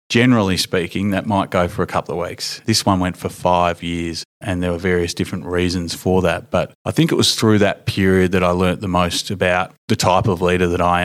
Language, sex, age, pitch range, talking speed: English, male, 30-49, 90-105 Hz, 240 wpm